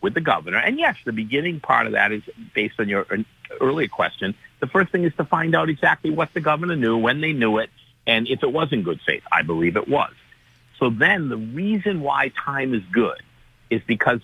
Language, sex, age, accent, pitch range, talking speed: English, male, 50-69, American, 95-130 Hz, 225 wpm